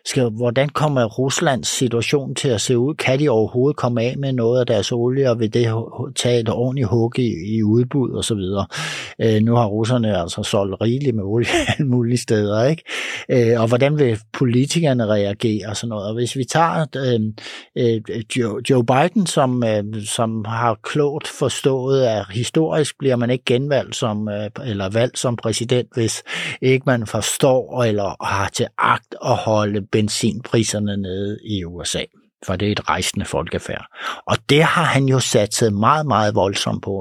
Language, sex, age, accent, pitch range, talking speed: Danish, male, 60-79, native, 105-130 Hz, 180 wpm